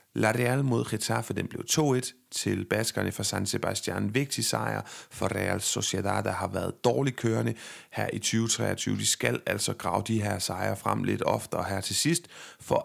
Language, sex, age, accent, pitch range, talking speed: Danish, male, 30-49, native, 100-125 Hz, 190 wpm